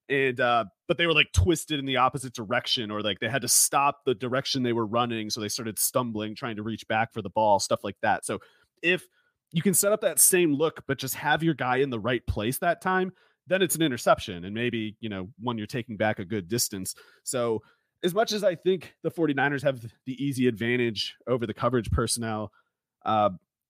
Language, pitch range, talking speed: English, 110-155 Hz, 225 wpm